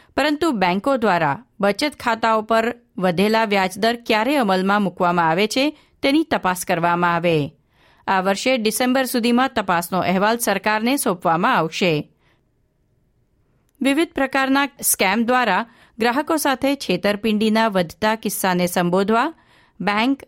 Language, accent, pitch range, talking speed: Gujarati, native, 185-255 Hz, 90 wpm